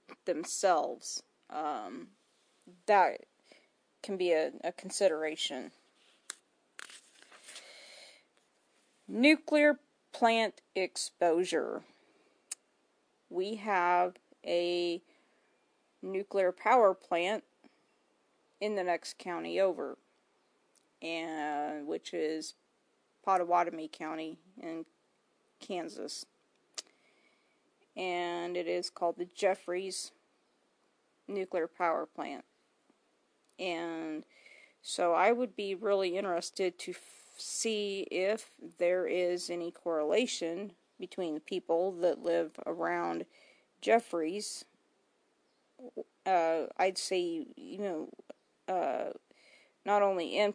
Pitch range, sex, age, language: 170-205 Hz, female, 40-59, English